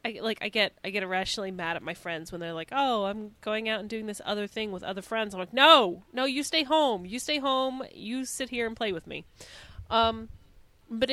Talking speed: 245 wpm